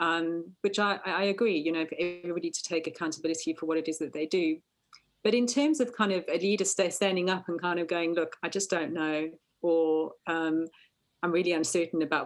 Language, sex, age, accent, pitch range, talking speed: English, female, 40-59, British, 165-205 Hz, 215 wpm